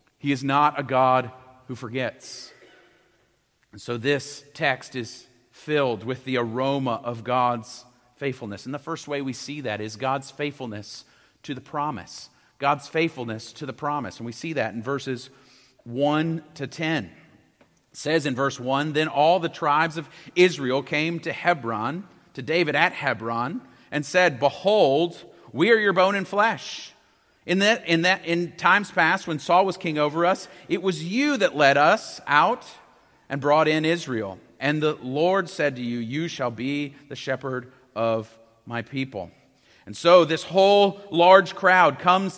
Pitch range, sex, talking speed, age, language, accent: 130-175 Hz, male, 165 wpm, 40-59, English, American